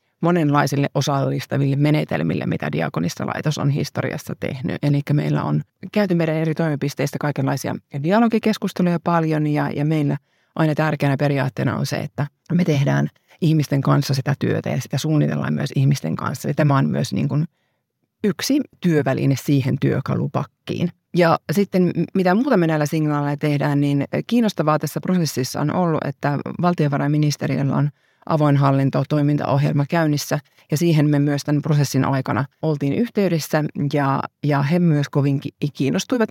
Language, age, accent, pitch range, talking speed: Finnish, 30-49, native, 140-160 Hz, 140 wpm